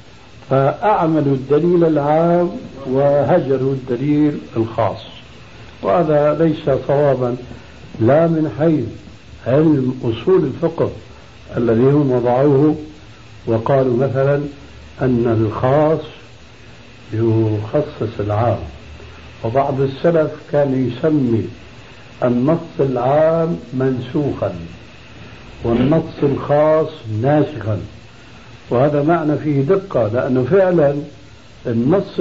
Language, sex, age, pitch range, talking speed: Arabic, male, 60-79, 120-155 Hz, 75 wpm